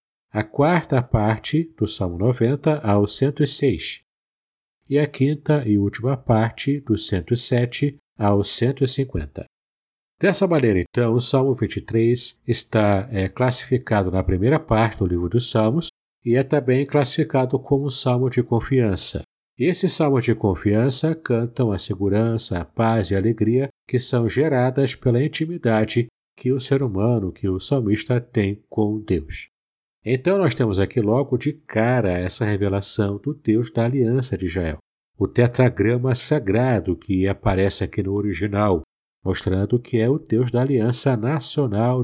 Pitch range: 100-130 Hz